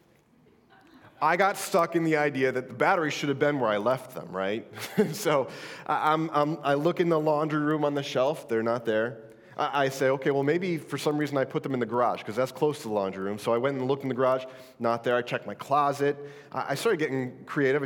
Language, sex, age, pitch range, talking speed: English, male, 30-49, 130-175 Hz, 250 wpm